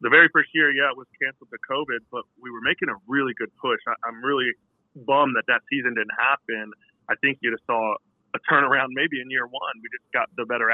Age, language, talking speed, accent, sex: 30-49, English, 240 wpm, American, male